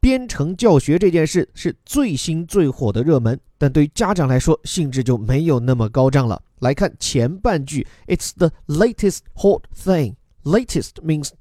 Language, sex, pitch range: Chinese, male, 130-175 Hz